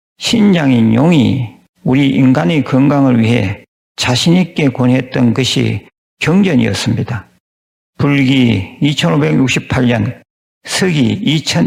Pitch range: 120-145 Hz